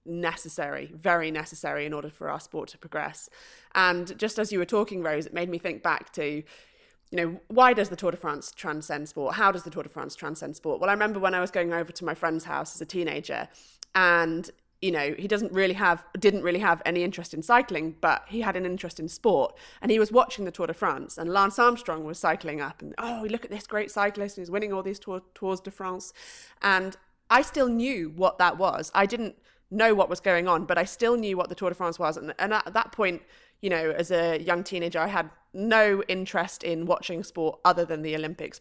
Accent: British